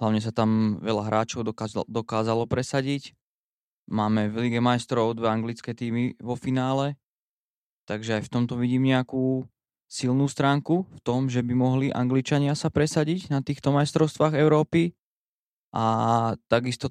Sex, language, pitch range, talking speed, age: male, Slovak, 115-135 Hz, 140 wpm, 20-39